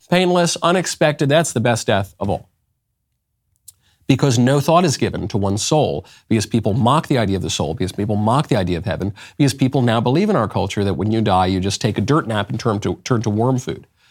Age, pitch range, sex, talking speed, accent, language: 40-59, 105-155 Hz, male, 235 wpm, American, English